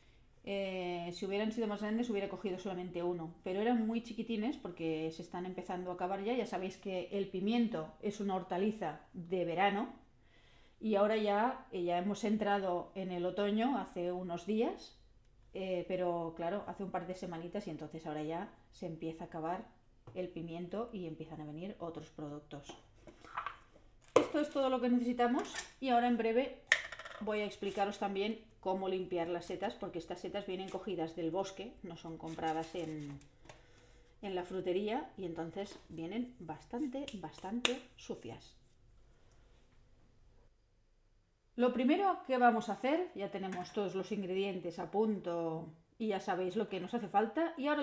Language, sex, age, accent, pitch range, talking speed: Spanish, female, 30-49, Spanish, 165-215 Hz, 160 wpm